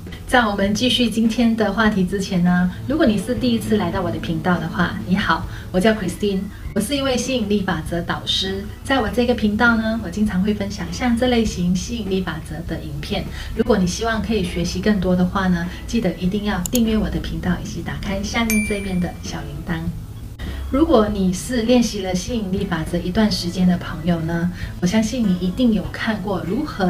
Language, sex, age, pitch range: Chinese, female, 30-49, 180-225 Hz